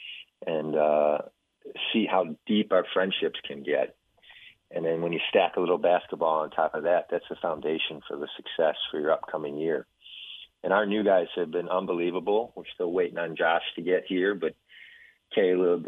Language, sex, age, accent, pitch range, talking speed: English, male, 40-59, American, 80-95 Hz, 180 wpm